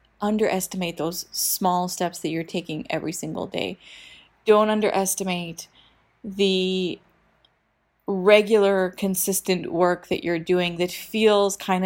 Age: 20-39